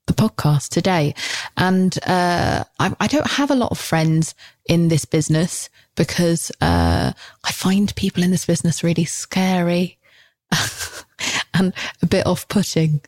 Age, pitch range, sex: 20-39, 155-180 Hz, female